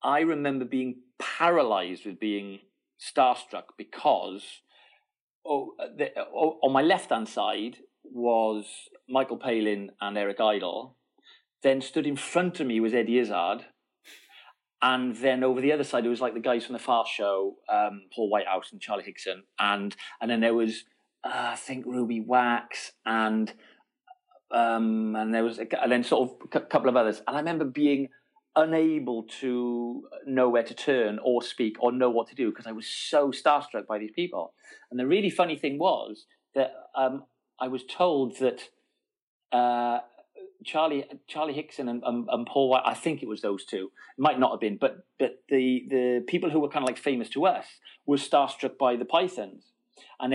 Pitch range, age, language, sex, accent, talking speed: 115-140 Hz, 40-59, English, male, British, 180 wpm